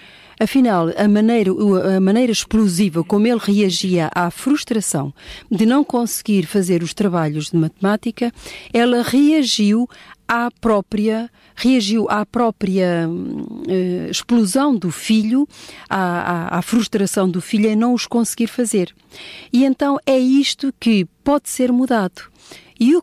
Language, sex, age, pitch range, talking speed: Portuguese, female, 40-59, 185-250 Hz, 120 wpm